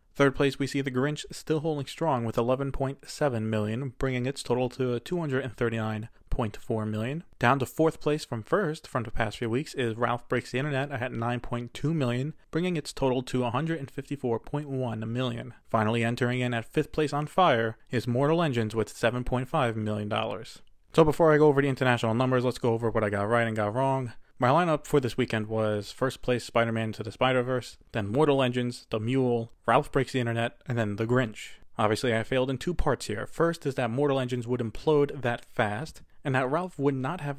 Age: 20-39